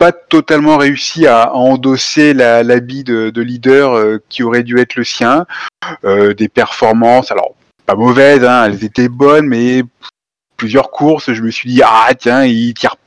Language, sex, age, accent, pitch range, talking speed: French, male, 20-39, French, 115-140 Hz, 180 wpm